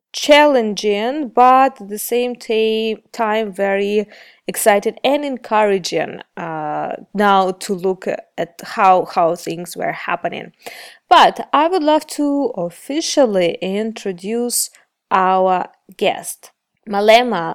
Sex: female